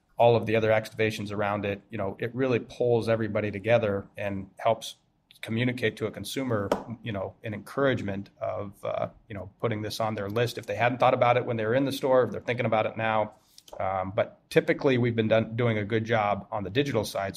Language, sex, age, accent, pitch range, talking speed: English, male, 30-49, American, 105-120 Hz, 225 wpm